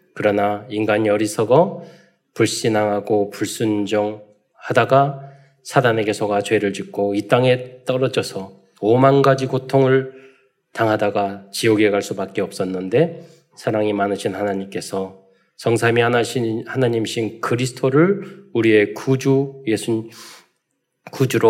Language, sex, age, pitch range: Korean, male, 20-39, 105-135 Hz